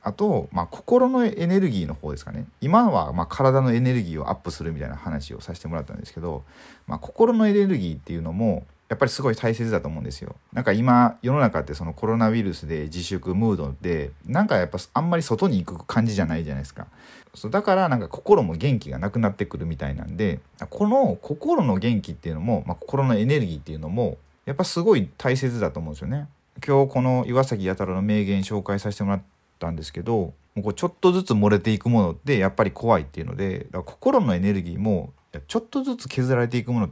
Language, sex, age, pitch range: Japanese, male, 40-59, 85-130 Hz